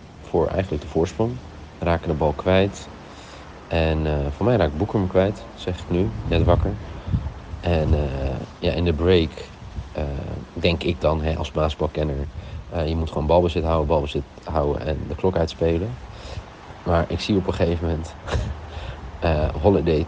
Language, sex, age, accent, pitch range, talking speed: Dutch, male, 40-59, Dutch, 80-95 Hz, 160 wpm